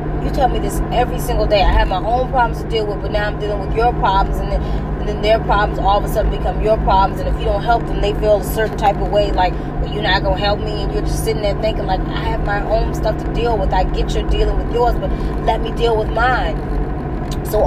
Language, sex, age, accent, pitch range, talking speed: English, female, 20-39, American, 165-200 Hz, 285 wpm